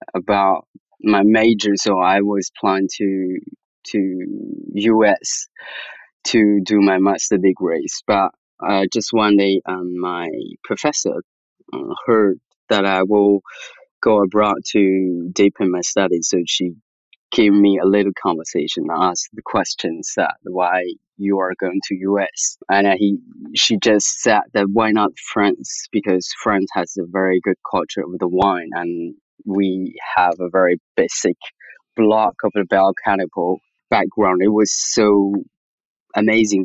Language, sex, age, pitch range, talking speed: English, male, 20-39, 95-110 Hz, 140 wpm